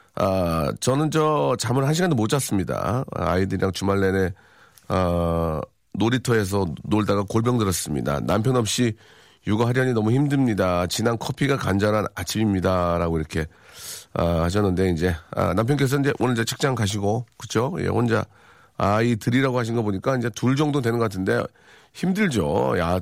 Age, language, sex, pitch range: 40-59, Korean, male, 100-140 Hz